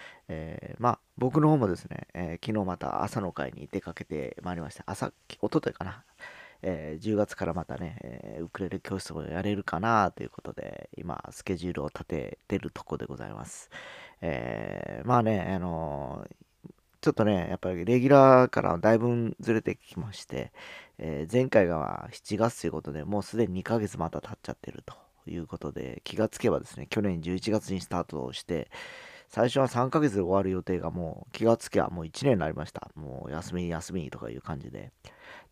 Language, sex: Japanese, male